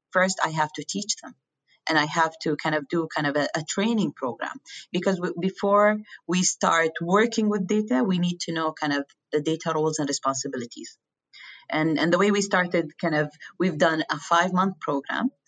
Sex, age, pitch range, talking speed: female, 30-49, 155-200 Hz, 200 wpm